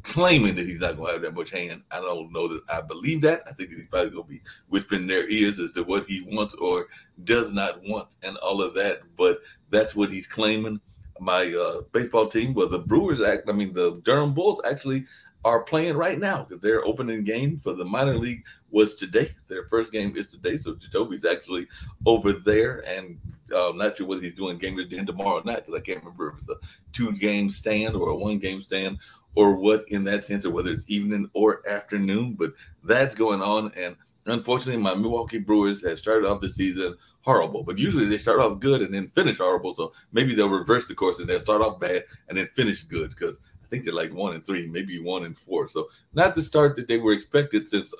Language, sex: English, male